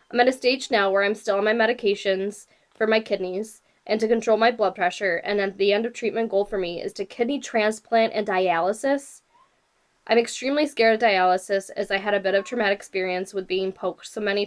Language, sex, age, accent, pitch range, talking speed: English, female, 10-29, American, 185-225 Hz, 220 wpm